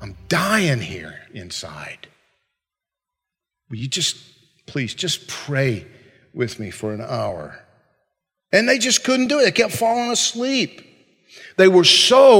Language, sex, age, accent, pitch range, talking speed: English, male, 50-69, American, 135-205 Hz, 135 wpm